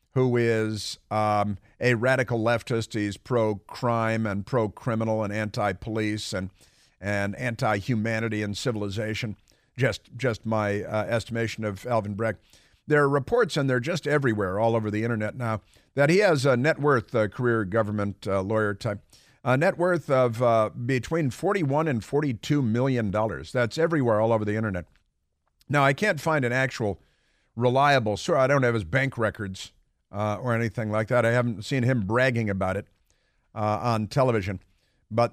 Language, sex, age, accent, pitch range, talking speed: English, male, 50-69, American, 105-130 Hz, 160 wpm